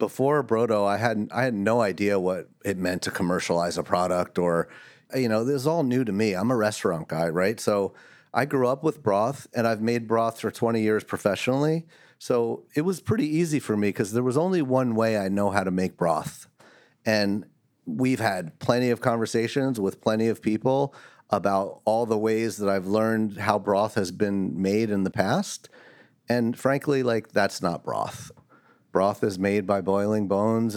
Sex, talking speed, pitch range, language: male, 195 wpm, 100-120 Hz, English